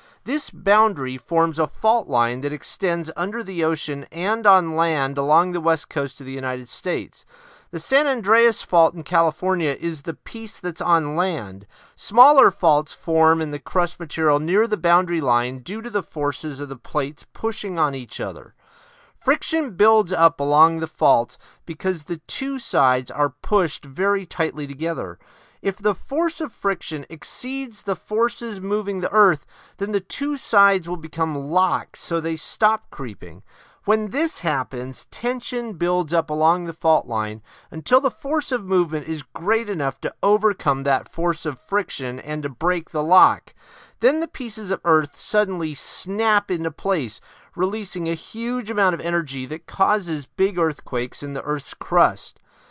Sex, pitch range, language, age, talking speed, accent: male, 150-210 Hz, English, 40-59, 165 wpm, American